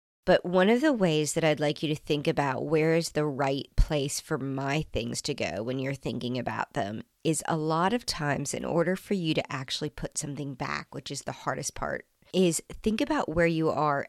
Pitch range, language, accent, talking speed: 150-180 Hz, English, American, 220 wpm